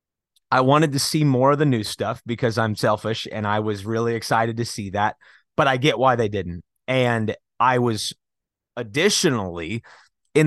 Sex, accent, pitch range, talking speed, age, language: male, American, 110-135 Hz, 180 wpm, 30-49, English